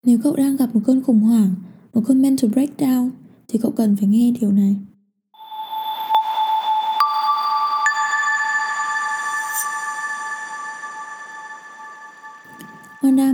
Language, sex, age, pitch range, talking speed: Vietnamese, female, 10-29, 215-280 Hz, 90 wpm